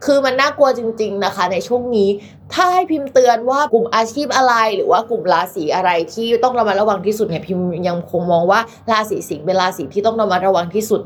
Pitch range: 195-245 Hz